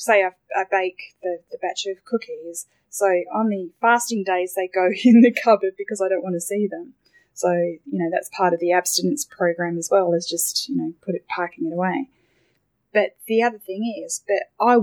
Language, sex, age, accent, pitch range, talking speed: English, female, 10-29, Australian, 175-215 Hz, 215 wpm